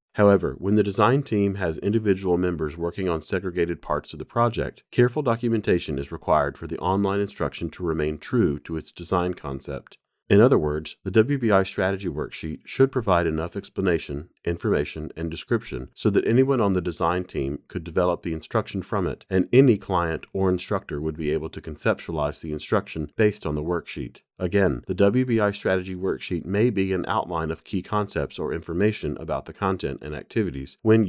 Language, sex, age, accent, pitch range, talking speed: English, male, 40-59, American, 80-105 Hz, 180 wpm